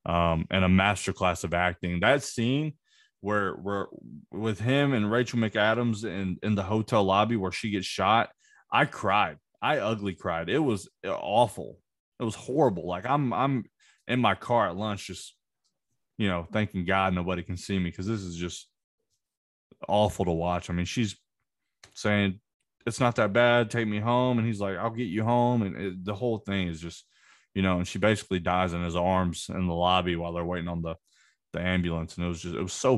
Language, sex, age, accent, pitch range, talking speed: English, male, 20-39, American, 85-105 Hz, 200 wpm